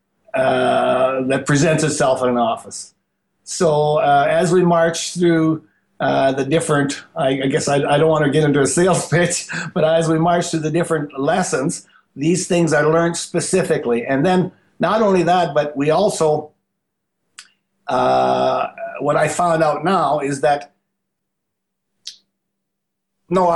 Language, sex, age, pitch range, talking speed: English, male, 60-79, 145-175 Hz, 150 wpm